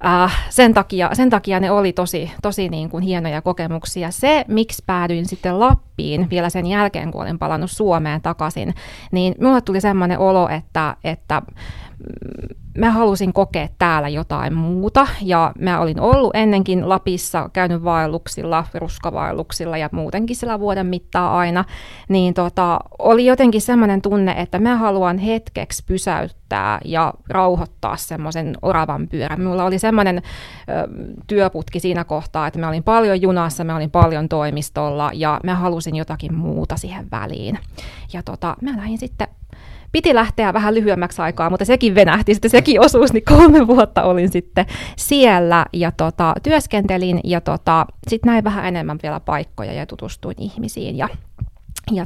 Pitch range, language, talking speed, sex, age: 170-210 Hz, Finnish, 150 wpm, female, 20-39